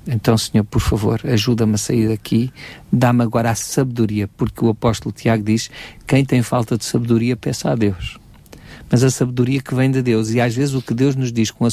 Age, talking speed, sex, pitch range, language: 50-69, 215 wpm, male, 110-125 Hz, Portuguese